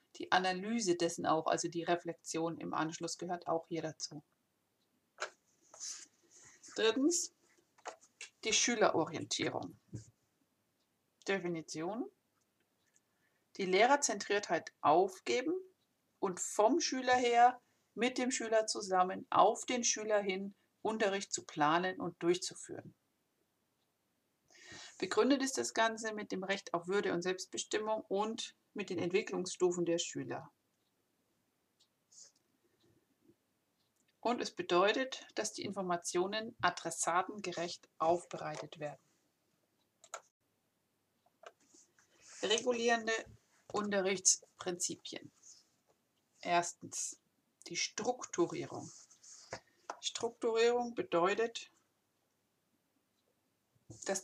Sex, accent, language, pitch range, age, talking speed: female, German, German, 175-240 Hz, 50-69, 80 wpm